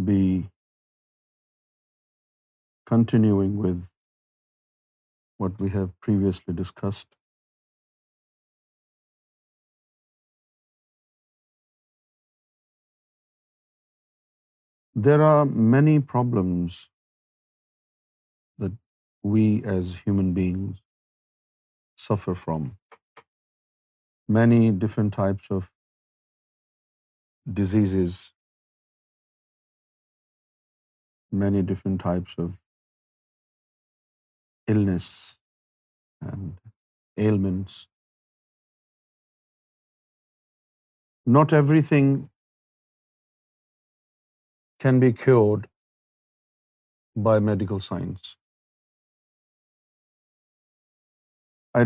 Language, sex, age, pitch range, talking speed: Urdu, male, 50-69, 95-120 Hz, 45 wpm